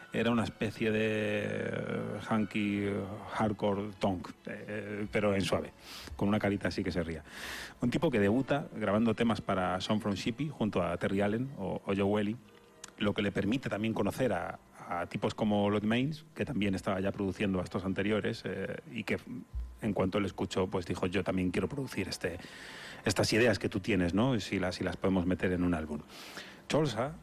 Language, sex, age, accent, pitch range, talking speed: Spanish, male, 30-49, Spanish, 95-110 Hz, 185 wpm